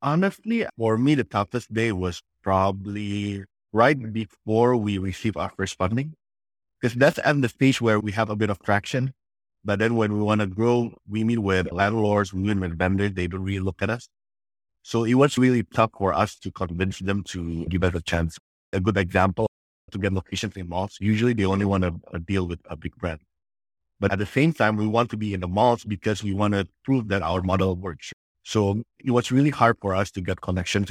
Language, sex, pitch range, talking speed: English, male, 95-110 Hz, 215 wpm